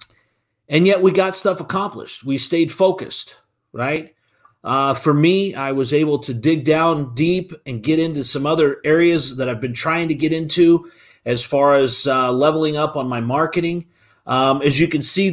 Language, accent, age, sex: English, American, 40-59, male